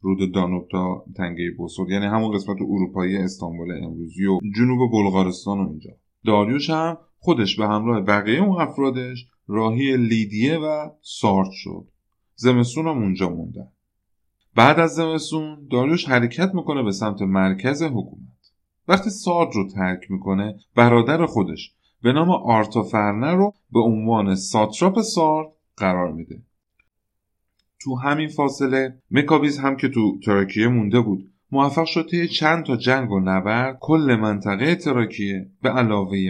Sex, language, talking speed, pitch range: male, Persian, 135 wpm, 95-130 Hz